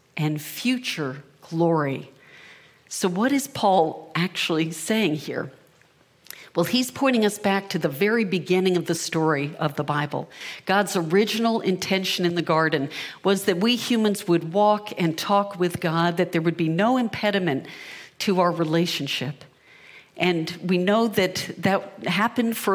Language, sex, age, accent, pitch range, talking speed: English, female, 50-69, American, 165-200 Hz, 150 wpm